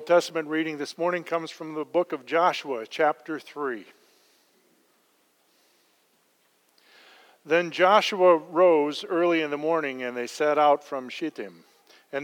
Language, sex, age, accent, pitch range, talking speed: English, male, 50-69, American, 135-170 Hz, 125 wpm